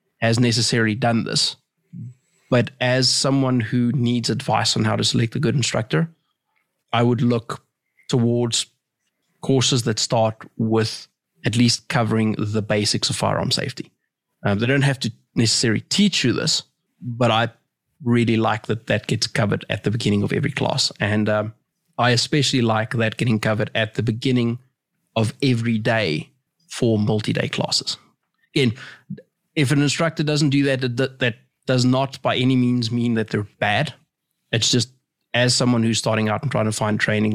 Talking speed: 160 wpm